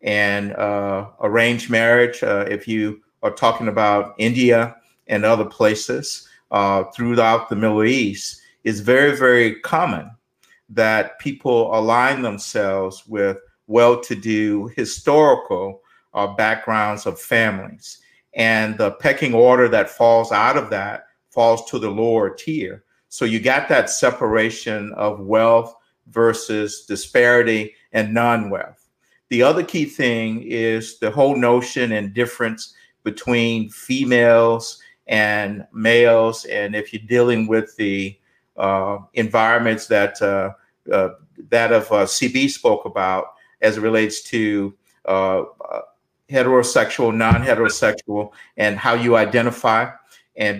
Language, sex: English, male